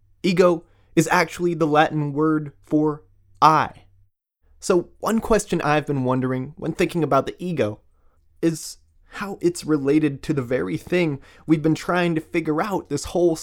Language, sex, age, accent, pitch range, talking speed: English, male, 20-39, American, 125-175 Hz, 155 wpm